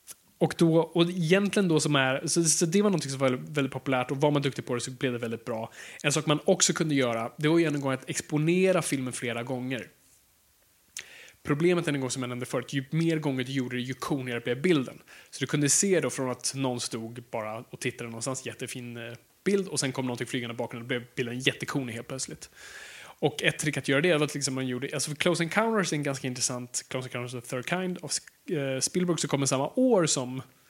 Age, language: 20-39, Swedish